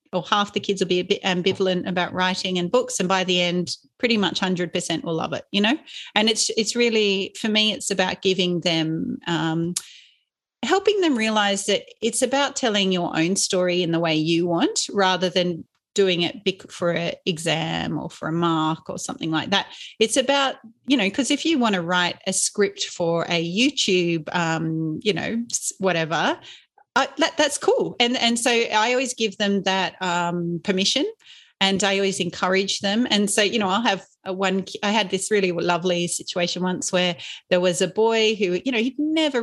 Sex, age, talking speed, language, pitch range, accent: female, 40-59, 195 wpm, English, 180-225 Hz, Australian